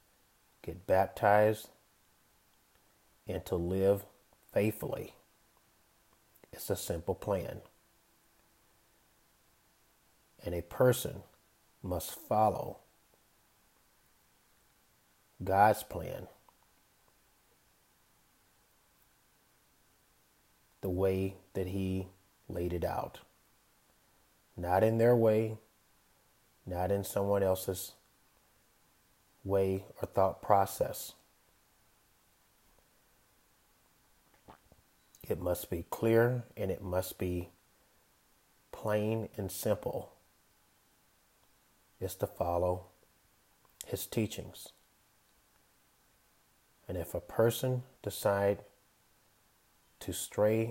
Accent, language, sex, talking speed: American, English, male, 70 wpm